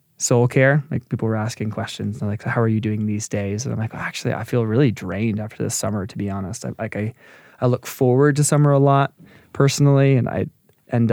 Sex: male